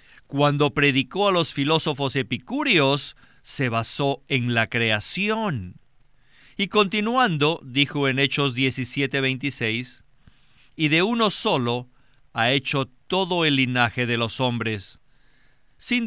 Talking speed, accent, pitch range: 110 wpm, Mexican, 125-175 Hz